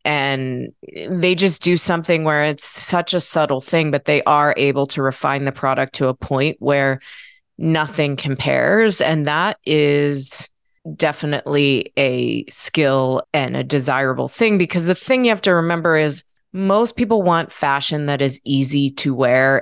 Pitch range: 135-170 Hz